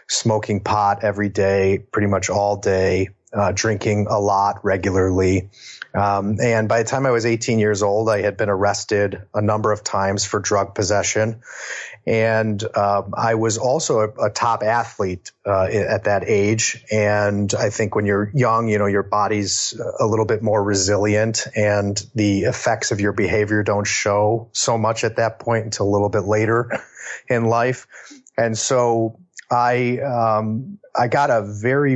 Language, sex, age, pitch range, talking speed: English, male, 30-49, 100-115 Hz, 170 wpm